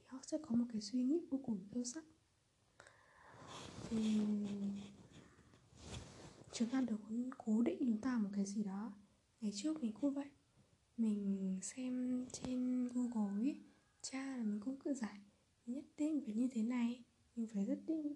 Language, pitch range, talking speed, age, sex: Vietnamese, 210-265 Hz, 165 wpm, 20-39, female